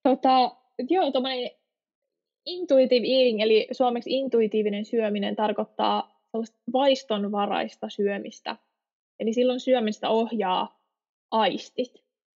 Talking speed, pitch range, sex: 75 wpm, 200-245 Hz, female